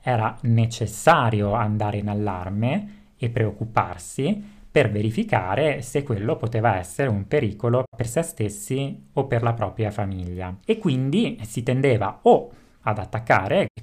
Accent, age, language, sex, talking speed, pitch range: native, 30-49, Italian, male, 135 wpm, 105-130 Hz